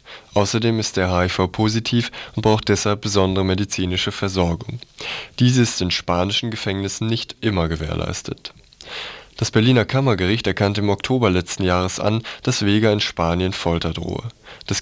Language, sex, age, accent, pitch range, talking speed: German, male, 20-39, German, 90-110 Hz, 140 wpm